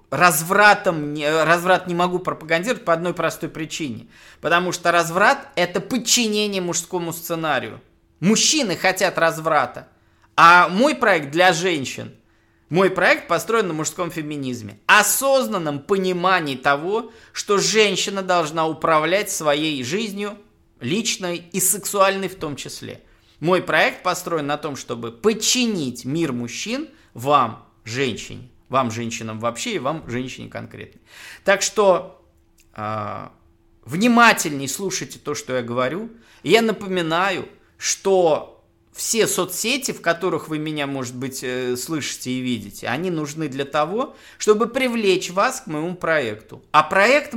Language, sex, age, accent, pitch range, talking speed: Russian, male, 20-39, native, 130-195 Hz, 125 wpm